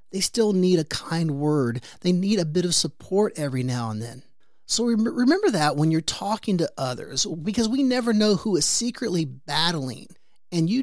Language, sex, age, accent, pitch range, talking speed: English, male, 30-49, American, 145-220 Hz, 190 wpm